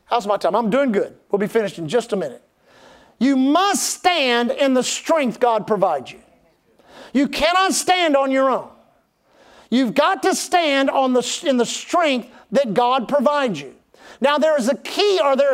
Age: 50-69